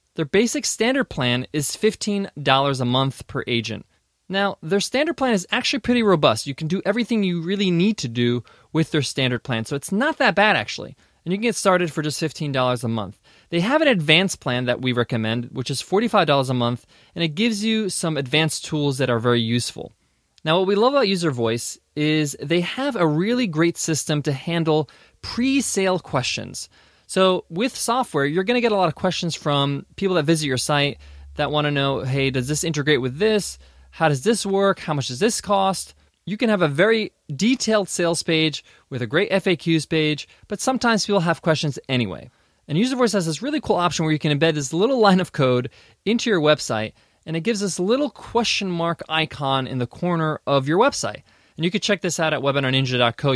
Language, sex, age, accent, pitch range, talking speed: English, male, 20-39, American, 135-200 Hz, 205 wpm